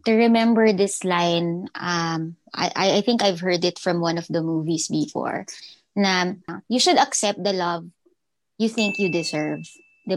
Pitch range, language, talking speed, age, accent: 180-235 Hz, Filipino, 165 wpm, 20-39, native